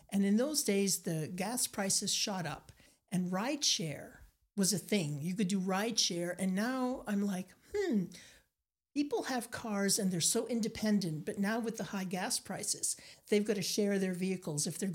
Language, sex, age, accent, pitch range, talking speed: English, male, 60-79, American, 175-210 Hz, 190 wpm